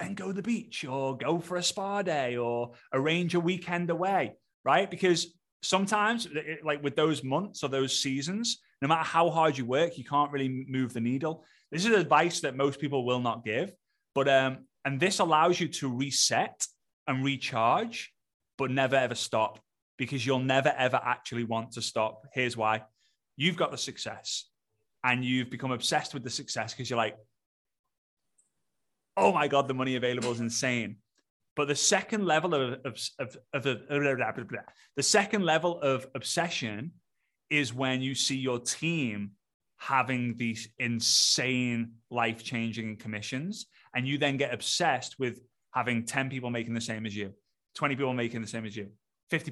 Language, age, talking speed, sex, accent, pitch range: English, 30-49, 175 wpm, male, British, 120-155 Hz